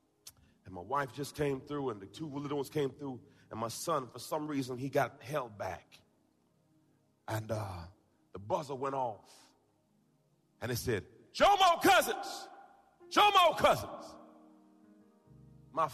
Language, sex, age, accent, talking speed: English, male, 40-59, American, 140 wpm